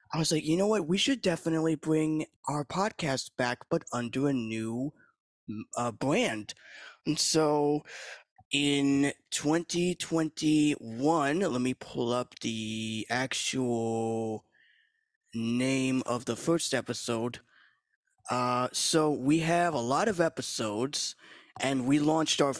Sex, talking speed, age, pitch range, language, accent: male, 120 wpm, 20-39, 120-155 Hz, English, American